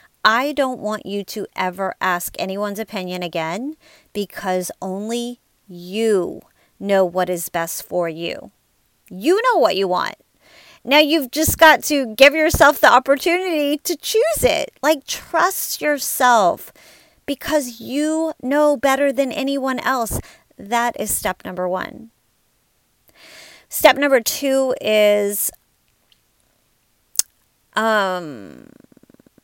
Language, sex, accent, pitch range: English, female, American, 195-285 Hz